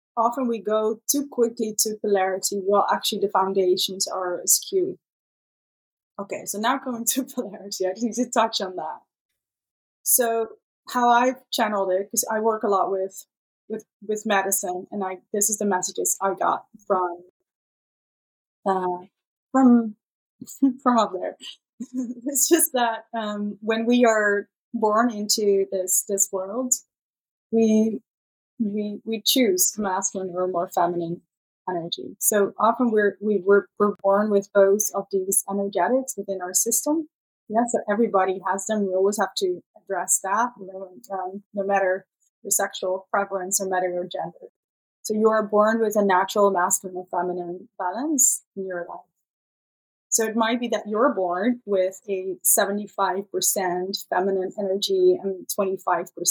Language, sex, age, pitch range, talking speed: English, female, 20-39, 190-230 Hz, 150 wpm